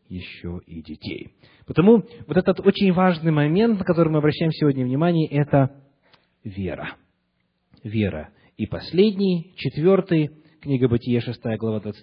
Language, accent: Russian, native